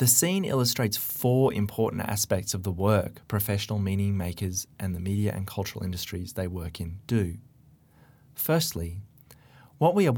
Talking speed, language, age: 155 wpm, English, 20-39